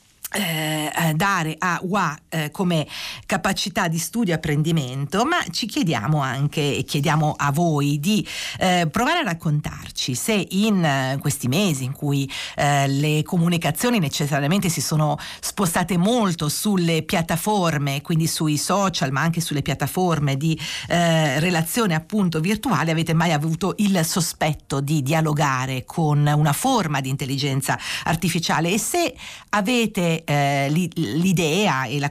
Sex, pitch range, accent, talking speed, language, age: female, 145-185 Hz, native, 140 wpm, Italian, 50-69